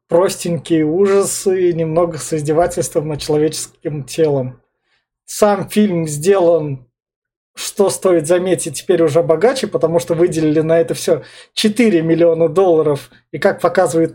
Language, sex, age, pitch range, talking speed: Russian, male, 20-39, 160-195 Hz, 125 wpm